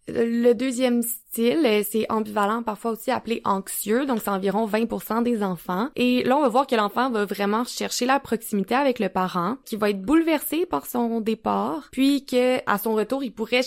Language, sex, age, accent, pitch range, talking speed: French, female, 20-39, Canadian, 205-245 Hz, 195 wpm